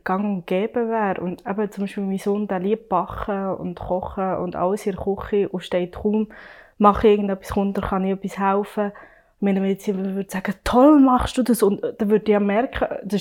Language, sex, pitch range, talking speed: German, female, 195-235 Hz, 195 wpm